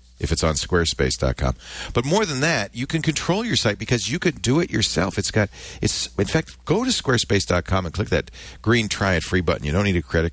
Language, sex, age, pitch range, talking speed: English, male, 50-69, 70-105 Hz, 230 wpm